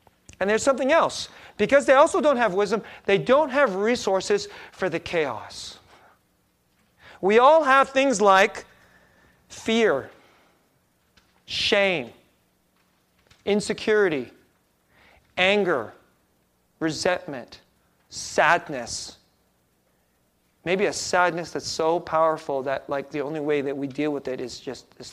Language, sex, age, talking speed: English, male, 40-59, 110 wpm